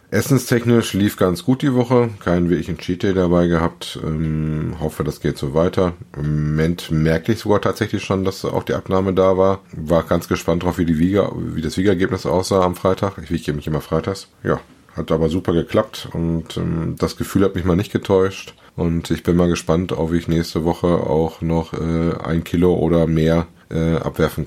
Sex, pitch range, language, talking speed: male, 80-90 Hz, German, 200 wpm